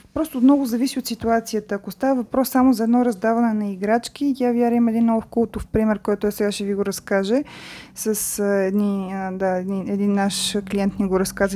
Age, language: 20-39, Bulgarian